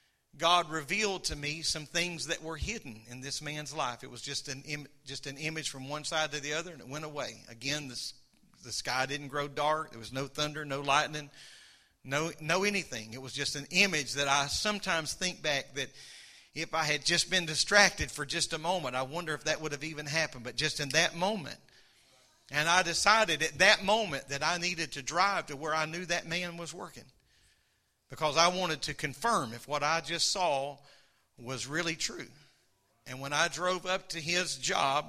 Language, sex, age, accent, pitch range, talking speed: English, male, 40-59, American, 140-170 Hz, 210 wpm